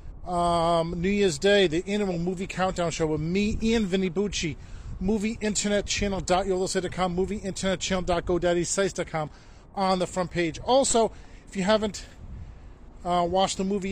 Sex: male